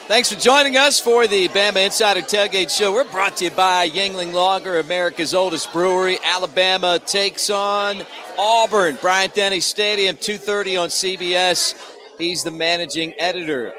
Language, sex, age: English, male, 40-59